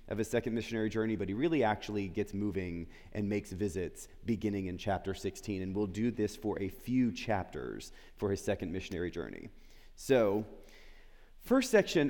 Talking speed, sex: 170 wpm, male